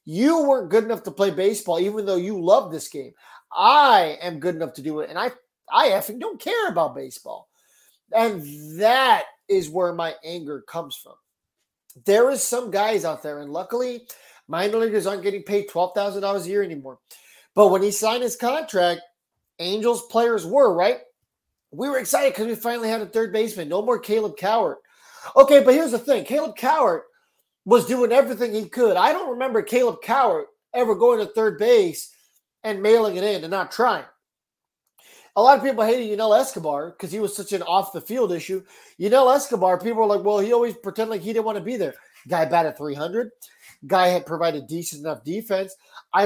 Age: 30-49